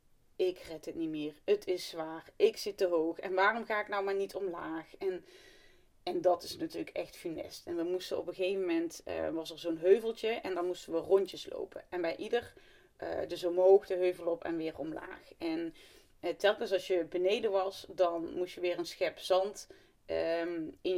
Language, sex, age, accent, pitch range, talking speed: Dutch, female, 30-49, Dutch, 175-240 Hz, 205 wpm